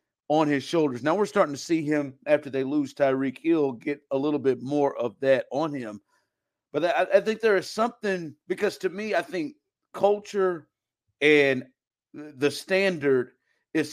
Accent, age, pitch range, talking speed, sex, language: American, 50-69, 130-165 Hz, 170 wpm, male, English